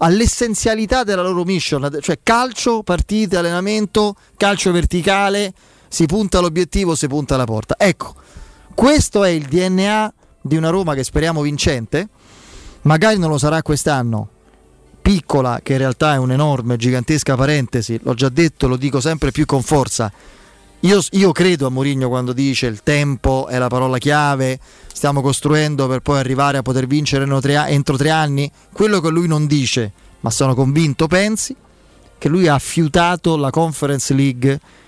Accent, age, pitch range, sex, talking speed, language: native, 30-49, 135-180 Hz, male, 155 wpm, Italian